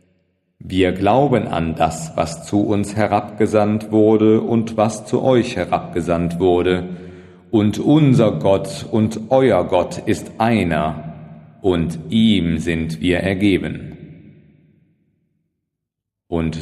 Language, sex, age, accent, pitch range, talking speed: German, male, 40-59, German, 85-110 Hz, 105 wpm